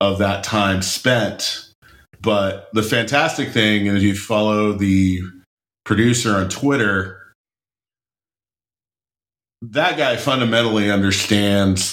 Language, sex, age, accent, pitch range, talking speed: English, male, 40-59, American, 95-110 Hz, 95 wpm